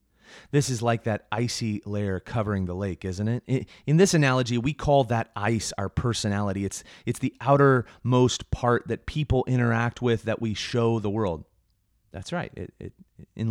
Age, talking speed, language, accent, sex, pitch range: 30-49, 175 wpm, English, American, male, 90-120 Hz